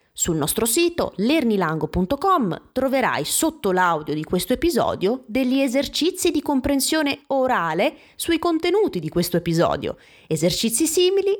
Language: Italian